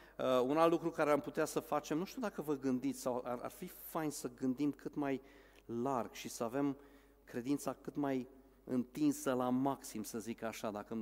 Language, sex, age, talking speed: Romanian, male, 40-59, 205 wpm